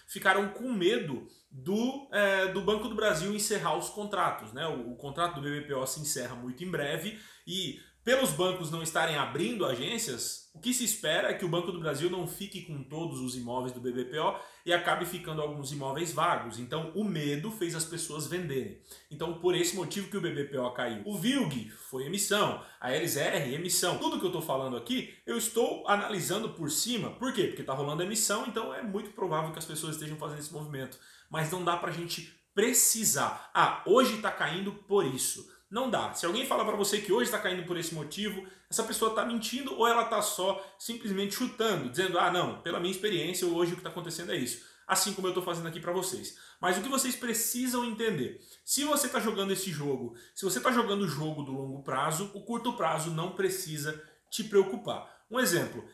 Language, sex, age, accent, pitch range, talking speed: Portuguese, male, 20-39, Brazilian, 155-210 Hz, 205 wpm